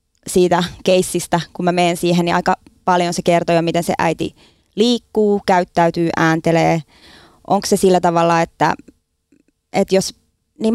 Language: Finnish